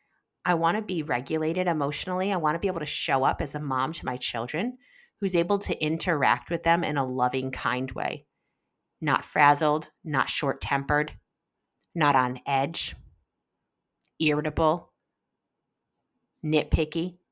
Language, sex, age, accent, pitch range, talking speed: English, female, 30-49, American, 135-180 Hz, 140 wpm